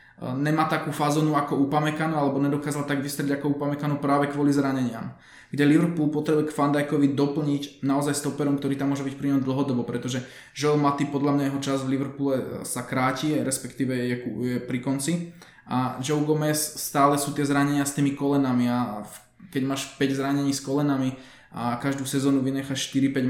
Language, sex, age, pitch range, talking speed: Slovak, male, 20-39, 130-145 Hz, 170 wpm